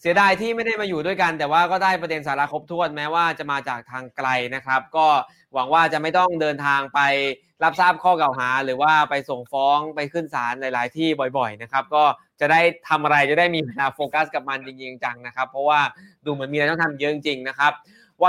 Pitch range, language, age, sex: 150-190 Hz, Thai, 20-39, male